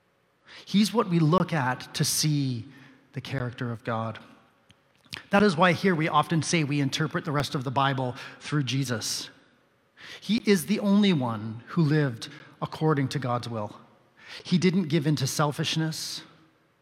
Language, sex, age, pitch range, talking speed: English, male, 40-59, 130-165 Hz, 155 wpm